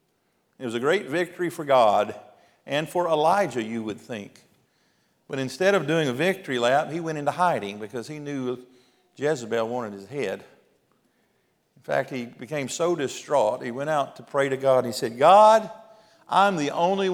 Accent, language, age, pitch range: American, English, 50-69, 125-170 Hz